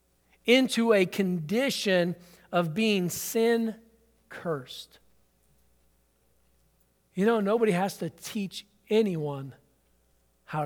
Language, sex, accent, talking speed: English, male, American, 80 wpm